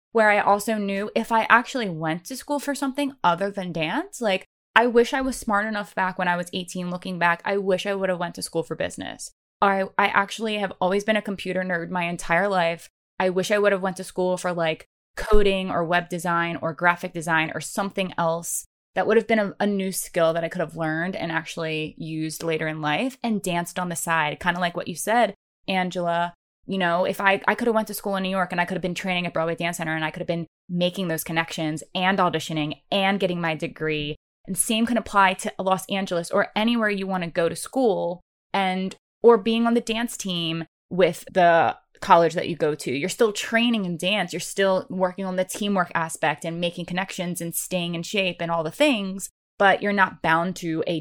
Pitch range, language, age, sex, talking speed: 170-200 Hz, English, 20-39, female, 230 wpm